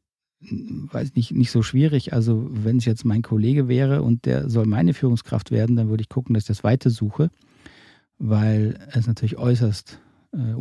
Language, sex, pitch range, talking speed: German, male, 105-125 Hz, 180 wpm